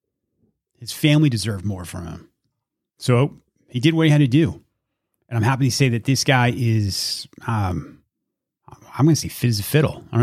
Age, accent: 30-49, American